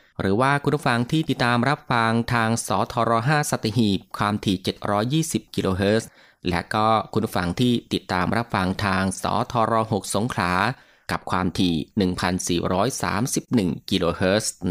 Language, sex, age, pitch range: Thai, male, 20-39, 95-120 Hz